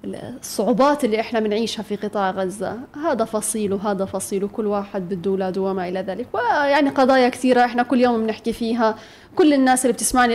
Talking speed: 170 wpm